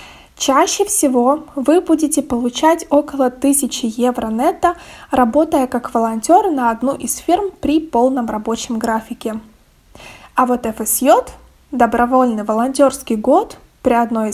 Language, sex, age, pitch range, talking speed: Russian, female, 20-39, 240-305 Hz, 115 wpm